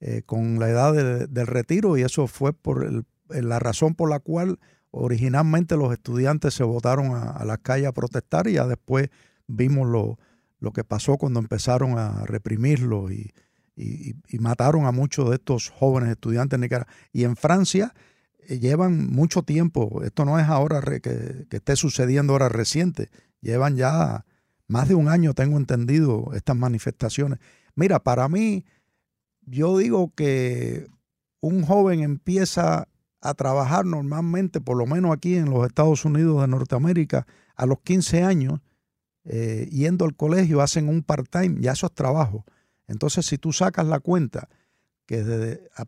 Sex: male